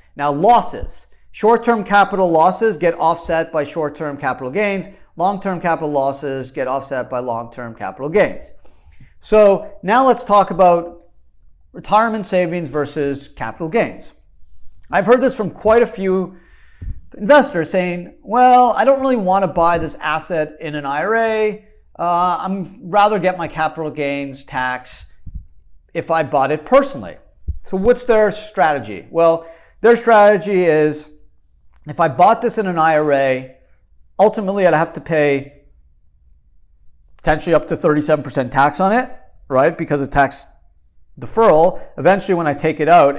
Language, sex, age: English, male, 40-59